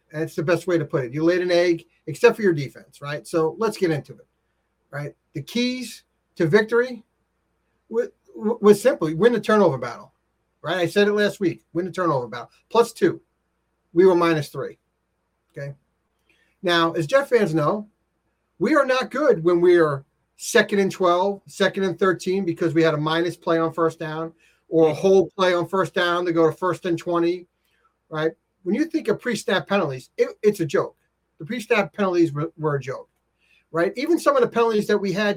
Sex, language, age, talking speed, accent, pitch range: male, English, 40-59, 200 wpm, American, 165-210 Hz